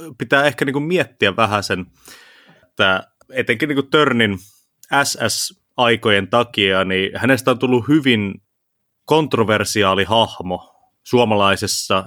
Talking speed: 105 wpm